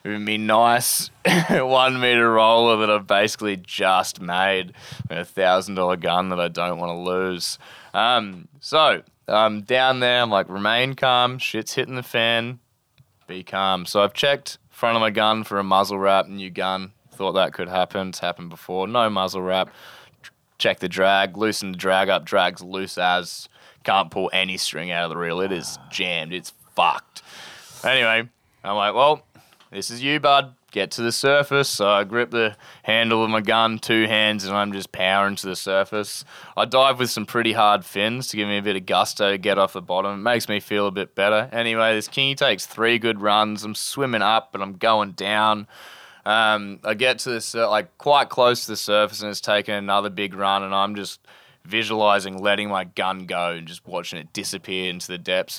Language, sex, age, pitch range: English, male, 20-39, 95-115 Hz